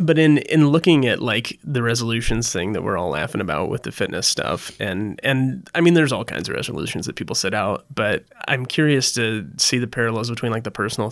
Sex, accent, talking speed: male, American, 225 wpm